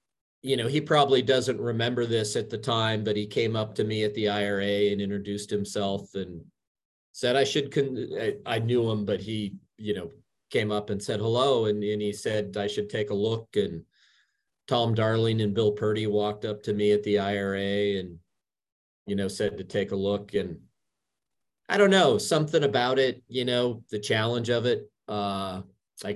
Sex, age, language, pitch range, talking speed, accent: male, 40-59, English, 100-120 Hz, 195 wpm, American